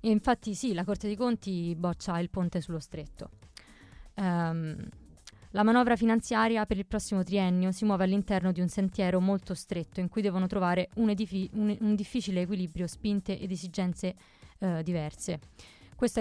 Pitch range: 180-215 Hz